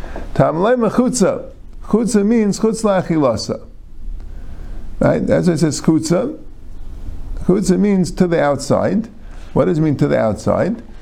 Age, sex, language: 50-69, male, English